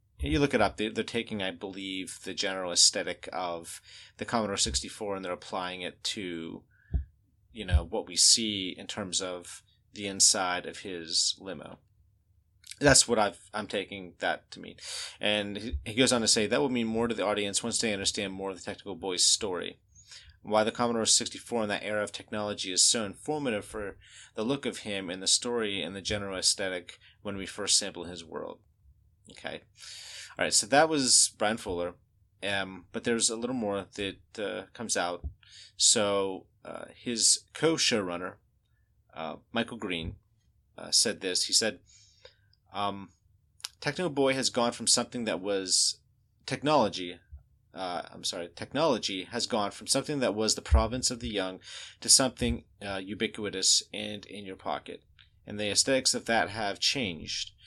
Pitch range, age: 95-115 Hz, 30-49